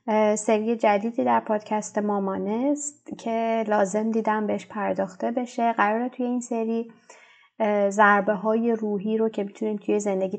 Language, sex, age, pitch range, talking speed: Persian, female, 30-49, 195-225 Hz, 140 wpm